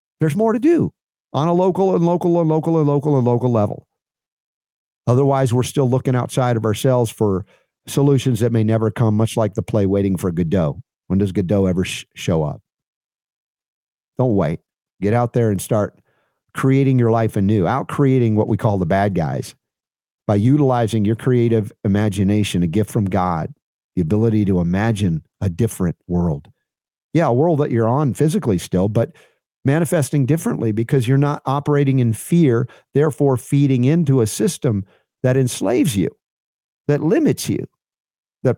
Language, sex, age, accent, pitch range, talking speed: English, male, 50-69, American, 110-155 Hz, 165 wpm